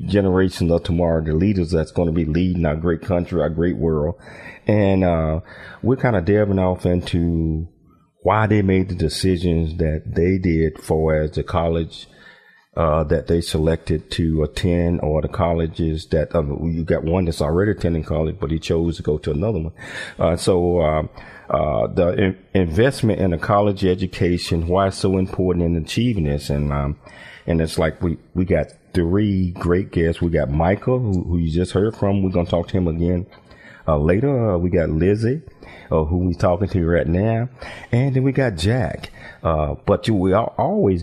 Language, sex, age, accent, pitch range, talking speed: English, male, 40-59, American, 80-100 Hz, 190 wpm